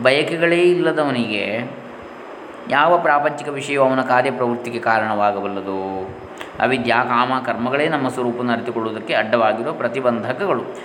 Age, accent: 20-39, native